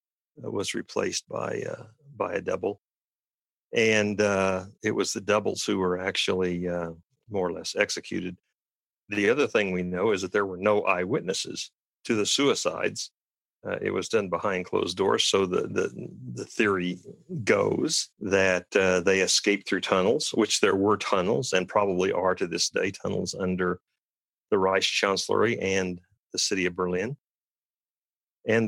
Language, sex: English, male